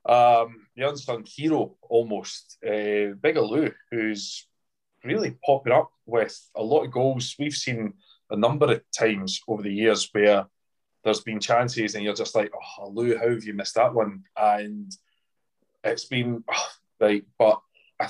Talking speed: 160 wpm